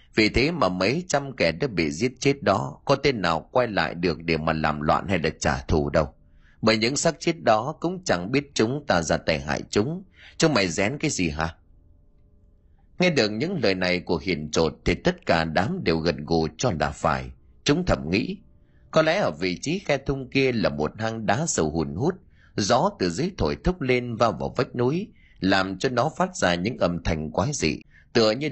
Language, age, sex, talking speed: Vietnamese, 30-49, male, 220 wpm